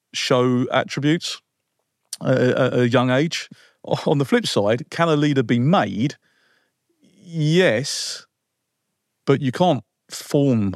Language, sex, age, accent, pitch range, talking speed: English, male, 40-59, British, 100-125 Hz, 110 wpm